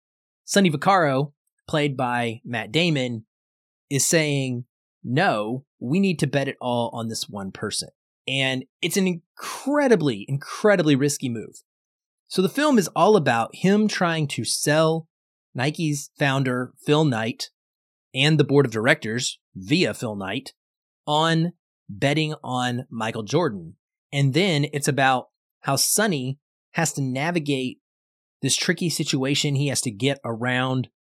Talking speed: 135 wpm